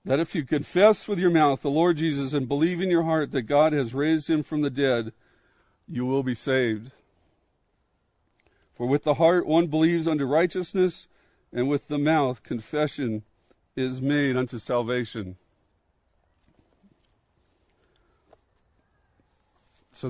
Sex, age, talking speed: male, 50-69, 135 wpm